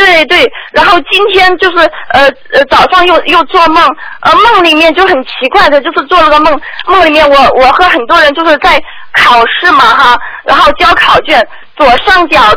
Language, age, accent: Chinese, 20-39, native